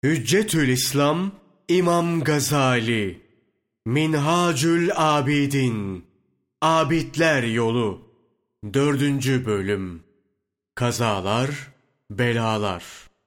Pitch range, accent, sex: 105-140 Hz, native, male